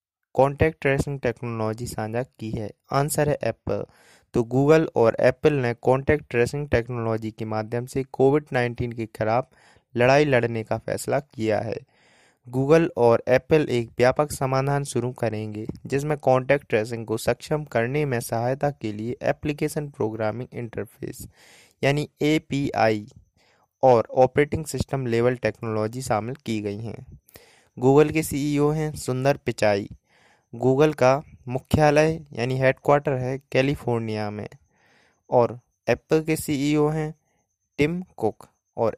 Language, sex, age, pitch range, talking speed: Hindi, male, 20-39, 115-145 Hz, 130 wpm